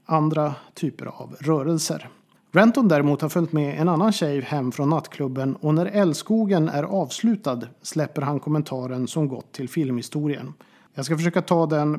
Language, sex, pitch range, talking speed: Swedish, male, 140-175 Hz, 160 wpm